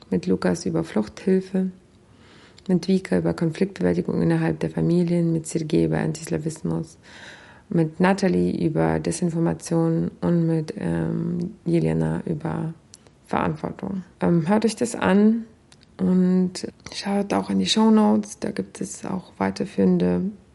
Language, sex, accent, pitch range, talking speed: German, female, German, 180-215 Hz, 120 wpm